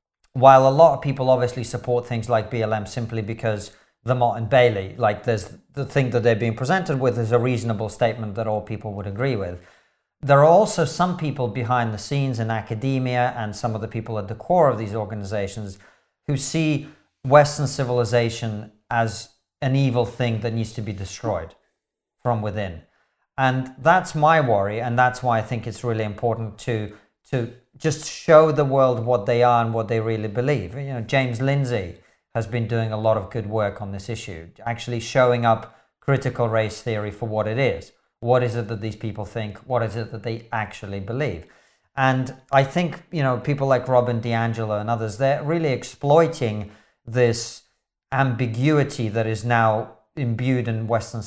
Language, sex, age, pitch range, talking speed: English, male, 40-59, 110-135 Hz, 185 wpm